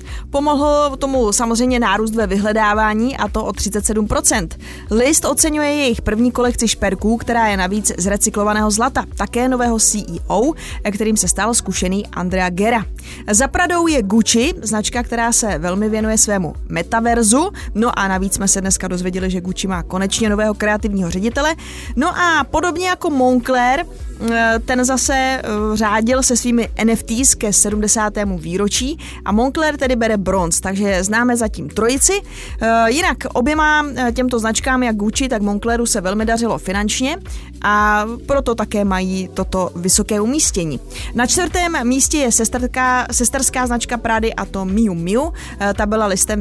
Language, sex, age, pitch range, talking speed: Czech, female, 20-39, 200-250 Hz, 145 wpm